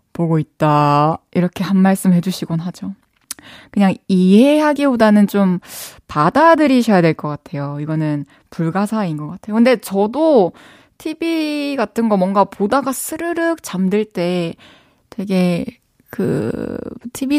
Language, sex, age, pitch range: Korean, female, 20-39, 180-255 Hz